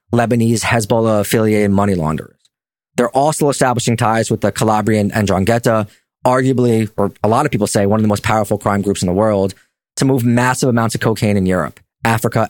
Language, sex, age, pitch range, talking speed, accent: English, male, 20-39, 105-130 Hz, 180 wpm, American